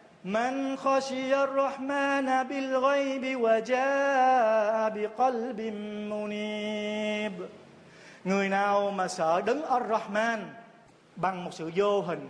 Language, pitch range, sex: Vietnamese, 190-245 Hz, male